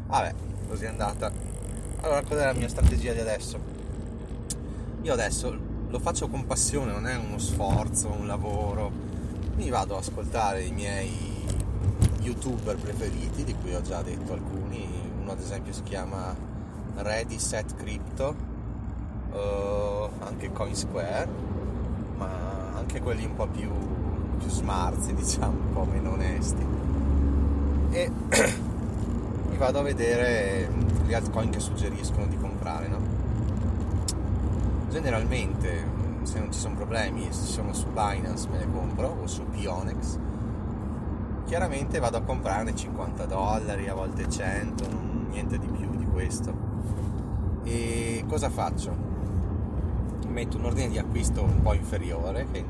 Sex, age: male, 30-49